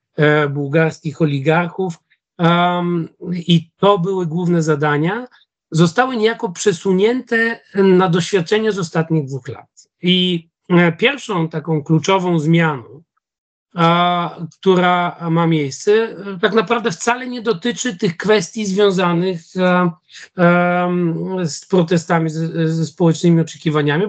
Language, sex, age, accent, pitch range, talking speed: Polish, male, 40-59, native, 160-195 Hz, 95 wpm